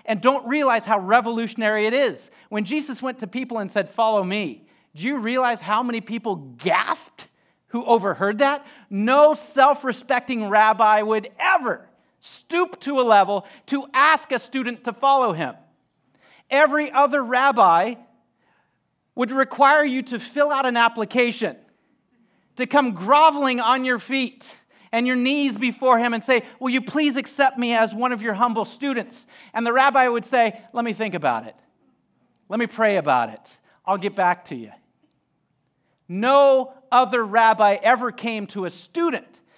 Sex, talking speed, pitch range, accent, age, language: male, 160 wpm, 215-265 Hz, American, 40-59, English